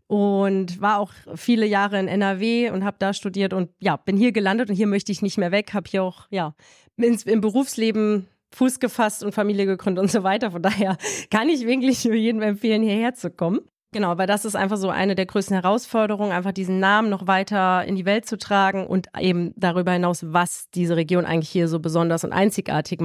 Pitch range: 185-215 Hz